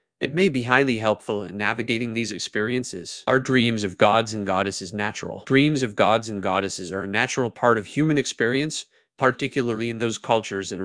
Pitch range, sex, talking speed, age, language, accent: 100-130 Hz, male, 185 wpm, 30-49, English, American